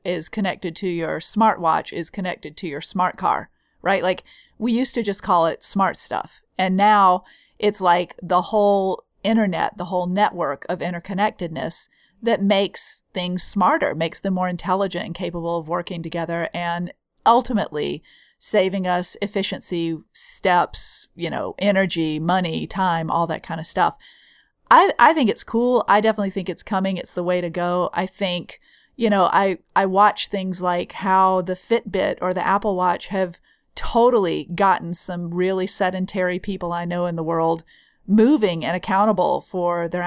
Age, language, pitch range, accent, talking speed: 40-59, English, 175-205 Hz, American, 165 wpm